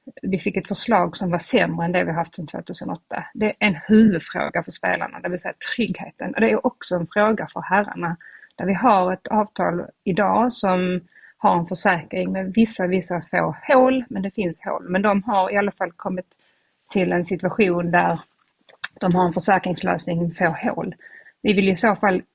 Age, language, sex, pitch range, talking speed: 30-49, Swedish, female, 180-215 Hz, 200 wpm